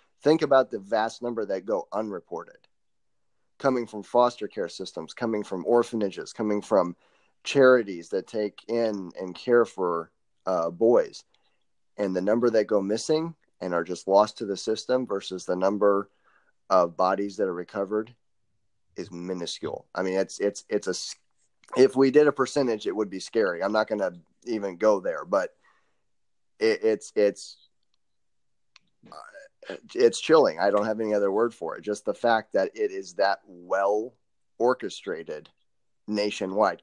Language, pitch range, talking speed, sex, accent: English, 100-135 Hz, 155 wpm, male, American